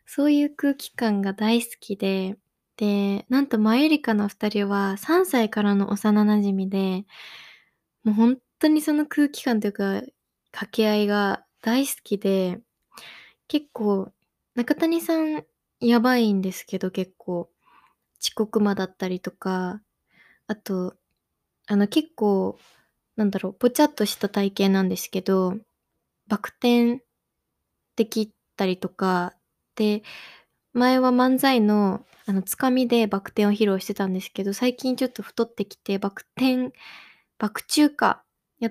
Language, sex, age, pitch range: Japanese, female, 20-39, 195-245 Hz